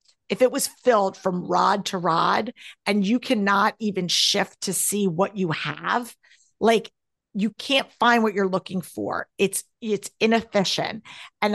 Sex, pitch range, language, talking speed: female, 190-225 Hz, English, 155 wpm